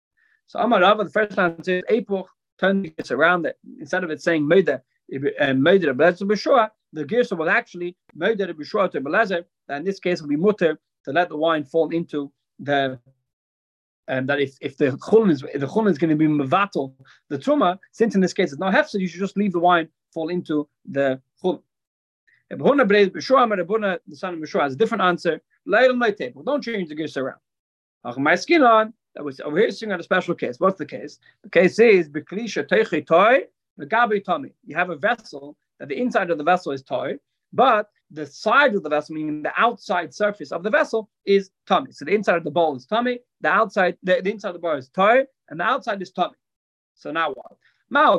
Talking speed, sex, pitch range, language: 205 wpm, male, 155-205 Hz, English